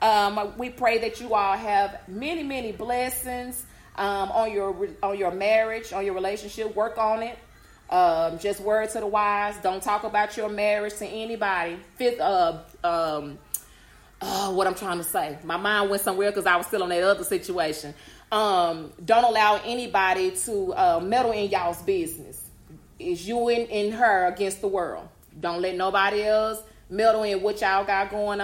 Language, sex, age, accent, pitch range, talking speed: English, female, 30-49, American, 195-235 Hz, 175 wpm